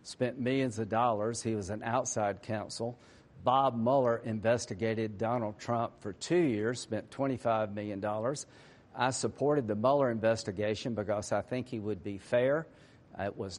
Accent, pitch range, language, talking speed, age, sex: American, 110-130 Hz, English, 150 wpm, 50-69, male